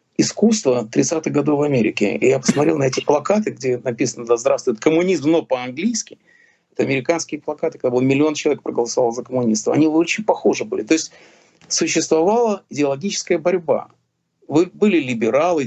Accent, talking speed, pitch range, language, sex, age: native, 155 wpm, 125-180 Hz, Russian, male, 40-59